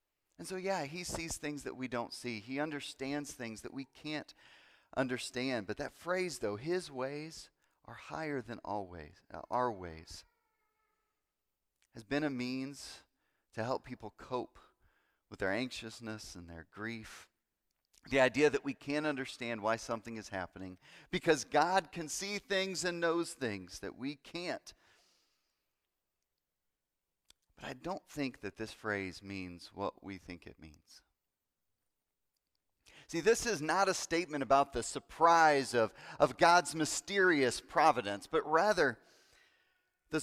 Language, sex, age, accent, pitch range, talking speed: English, male, 40-59, American, 110-170 Hz, 140 wpm